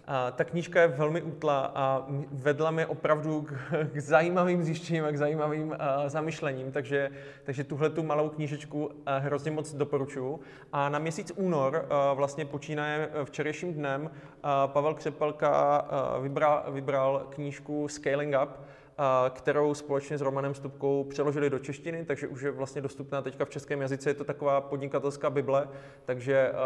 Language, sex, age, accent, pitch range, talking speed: Czech, male, 20-39, native, 130-150 Hz, 140 wpm